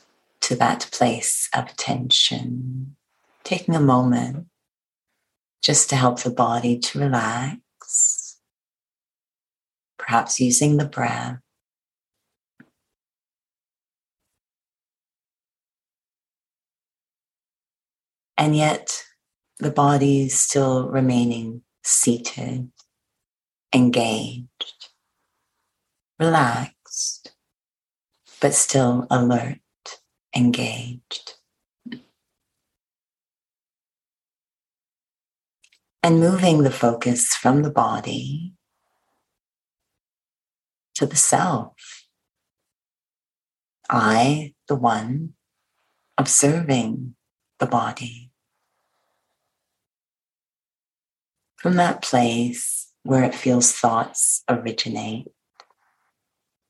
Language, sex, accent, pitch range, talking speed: English, female, American, 120-140 Hz, 60 wpm